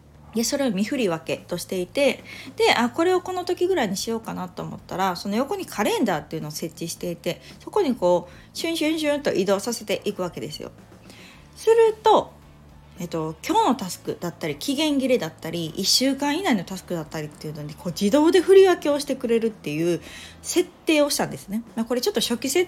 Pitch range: 175-280 Hz